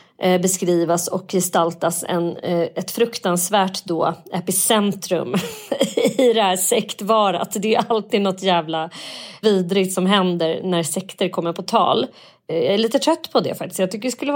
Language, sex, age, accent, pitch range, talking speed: Swedish, female, 30-49, native, 170-215 Hz, 150 wpm